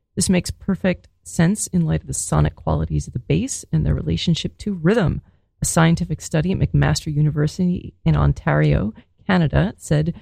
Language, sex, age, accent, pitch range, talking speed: English, female, 30-49, American, 145-180 Hz, 165 wpm